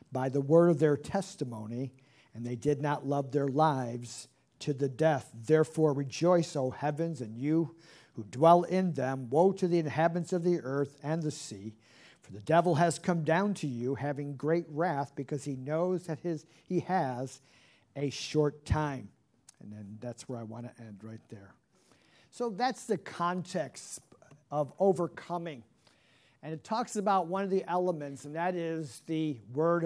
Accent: American